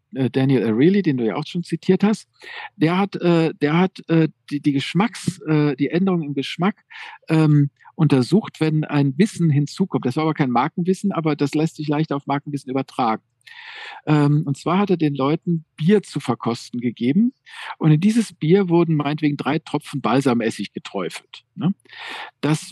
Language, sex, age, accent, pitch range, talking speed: German, male, 50-69, German, 140-175 Hz, 155 wpm